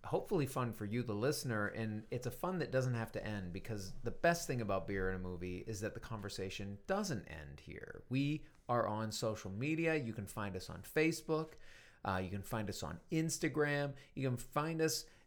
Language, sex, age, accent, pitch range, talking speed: English, male, 40-59, American, 105-135 Hz, 210 wpm